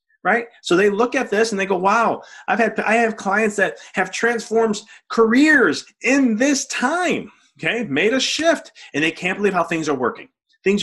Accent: American